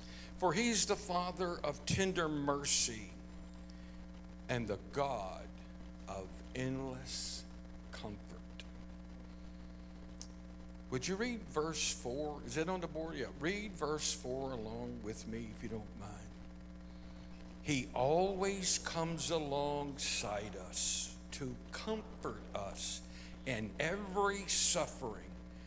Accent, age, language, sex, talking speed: American, 60-79, English, male, 105 wpm